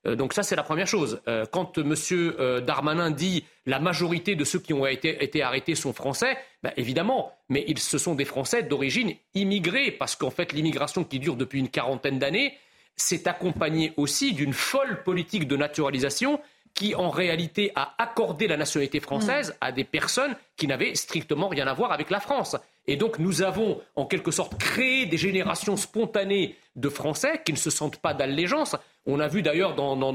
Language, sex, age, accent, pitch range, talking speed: French, male, 40-59, French, 155-205 Hz, 185 wpm